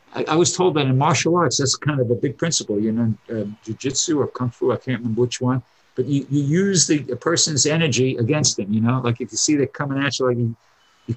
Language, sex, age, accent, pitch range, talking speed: English, male, 50-69, American, 120-150 Hz, 265 wpm